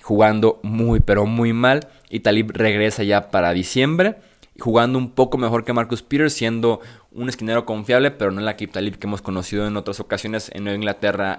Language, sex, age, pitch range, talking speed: Spanish, male, 20-39, 100-115 Hz, 185 wpm